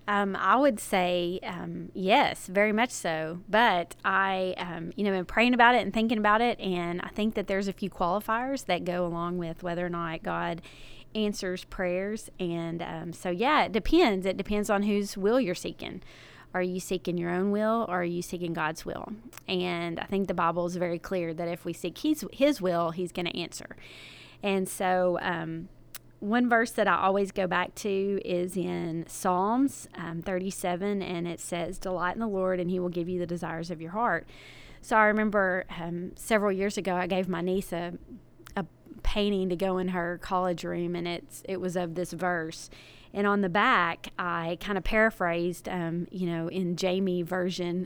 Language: English